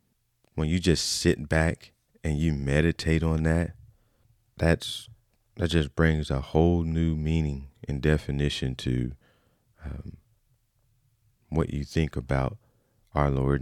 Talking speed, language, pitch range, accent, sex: 125 wpm, English, 70-105 Hz, American, male